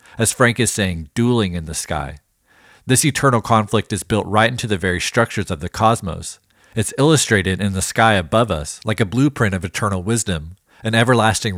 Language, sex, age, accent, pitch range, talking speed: English, male, 40-59, American, 95-120 Hz, 185 wpm